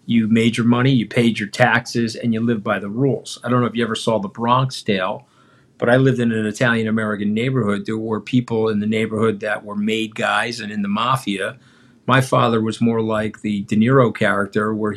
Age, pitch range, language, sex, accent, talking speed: 50-69, 105-125 Hz, English, male, American, 225 wpm